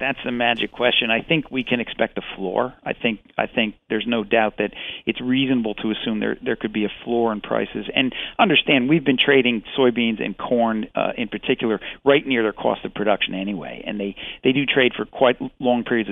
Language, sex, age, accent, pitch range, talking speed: English, male, 50-69, American, 105-125 Hz, 215 wpm